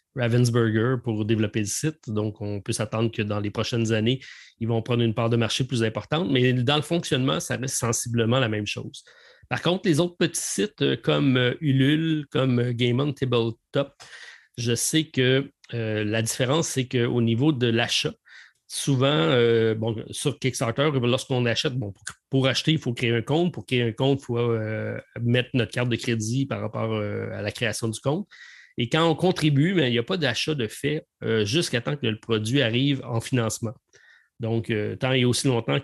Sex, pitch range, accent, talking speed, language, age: male, 115-135 Hz, Canadian, 200 wpm, French, 30-49